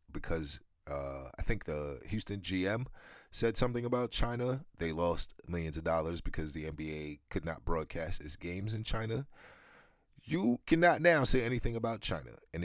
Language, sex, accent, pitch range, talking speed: English, male, American, 80-115 Hz, 160 wpm